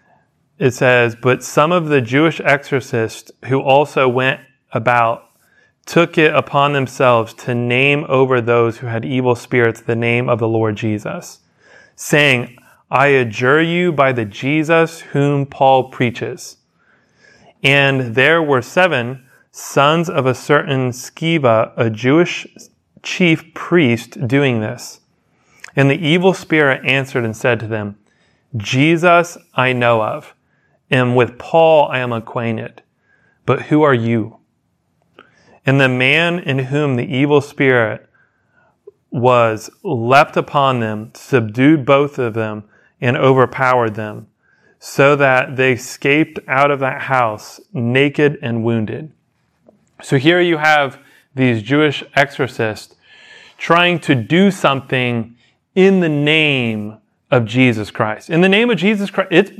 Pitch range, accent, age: 120-155 Hz, American, 30-49